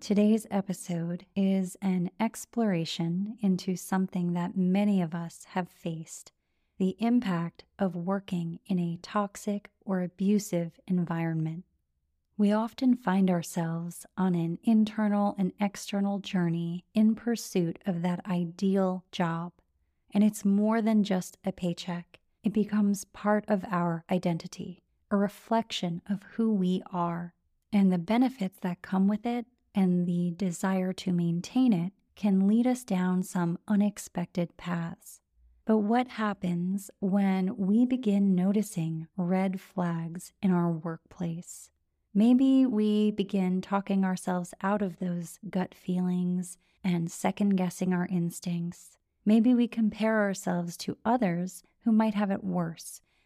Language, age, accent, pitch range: English, 30-49, American, 175-205 Hz